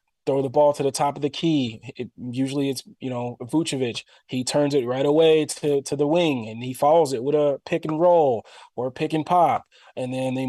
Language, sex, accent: English, male, American